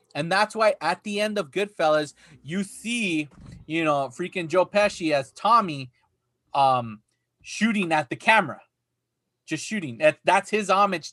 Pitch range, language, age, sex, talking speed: 145-205 Hz, English, 20-39, male, 145 wpm